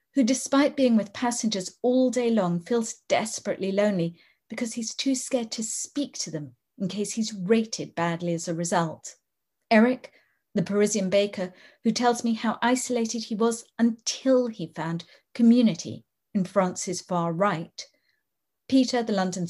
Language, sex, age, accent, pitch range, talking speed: English, female, 40-59, British, 175-230 Hz, 150 wpm